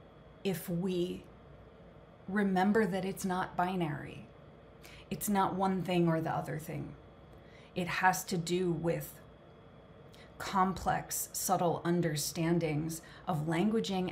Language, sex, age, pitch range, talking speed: English, female, 30-49, 170-200 Hz, 105 wpm